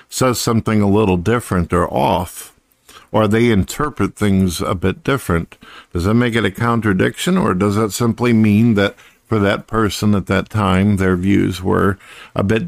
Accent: American